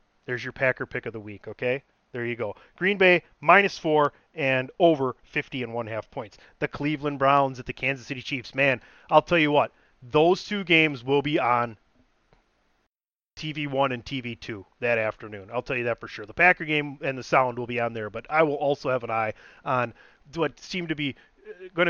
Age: 30-49